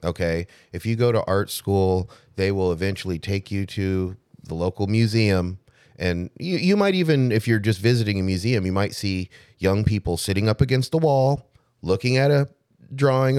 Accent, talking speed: American, 185 wpm